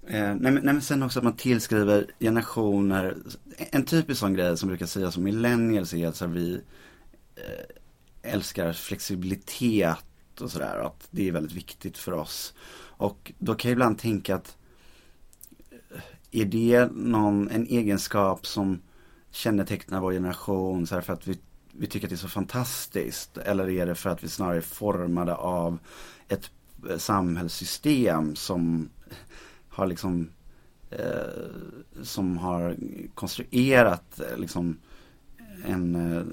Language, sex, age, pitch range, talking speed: English, male, 30-49, 85-105 Hz, 140 wpm